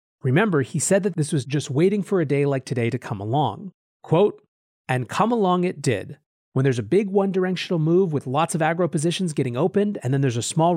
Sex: male